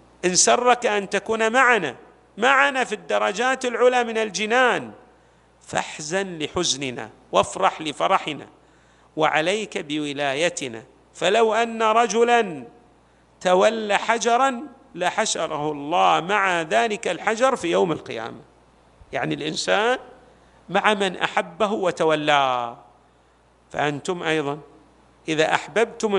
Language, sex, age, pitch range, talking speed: Arabic, male, 50-69, 145-220 Hz, 90 wpm